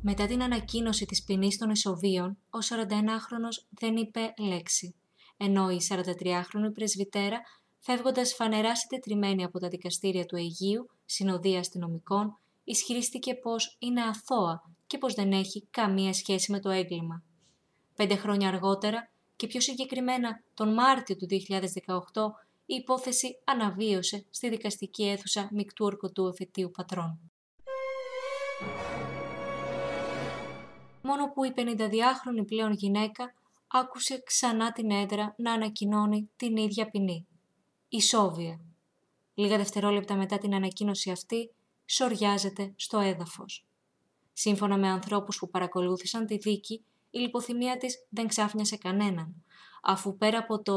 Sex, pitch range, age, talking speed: female, 195-230 Hz, 20-39, 120 wpm